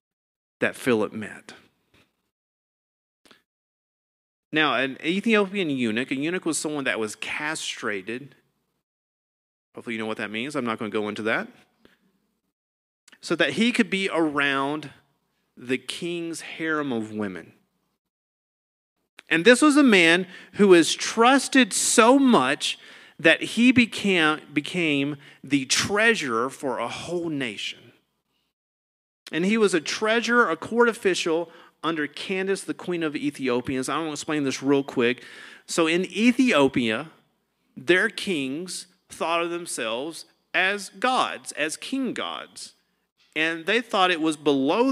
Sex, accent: male, American